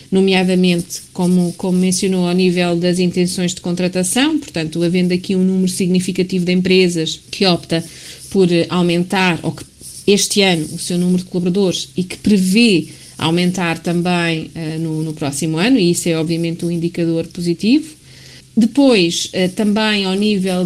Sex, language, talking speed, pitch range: female, Portuguese, 150 wpm, 170-195 Hz